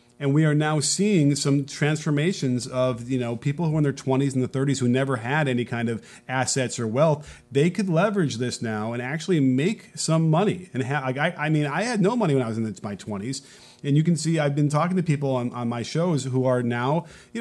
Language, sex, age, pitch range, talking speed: English, male, 30-49, 130-165 Hz, 240 wpm